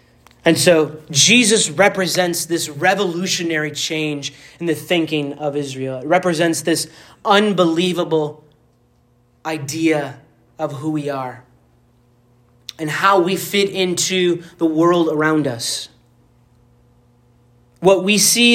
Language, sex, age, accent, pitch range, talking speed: English, male, 30-49, American, 150-195 Hz, 105 wpm